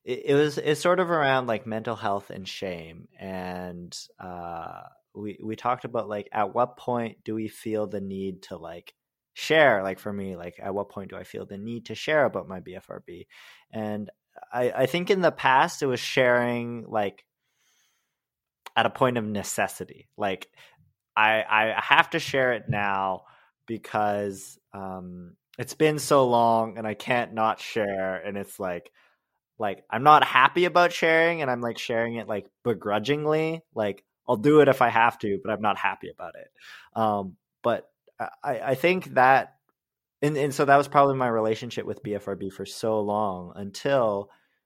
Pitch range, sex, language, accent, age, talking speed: 100-135 Hz, male, English, American, 20-39, 175 wpm